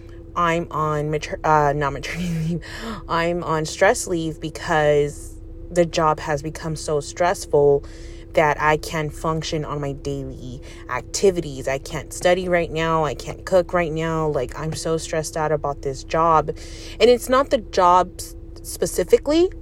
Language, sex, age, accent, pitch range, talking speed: English, female, 30-49, American, 145-175 Hz, 155 wpm